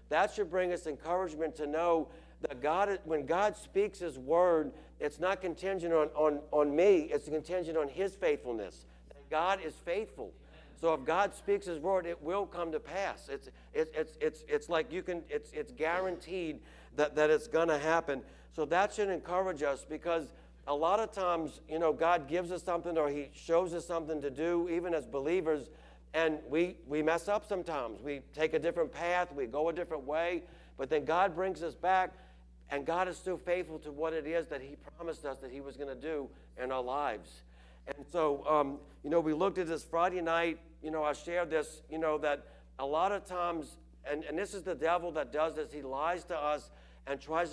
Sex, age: male, 60-79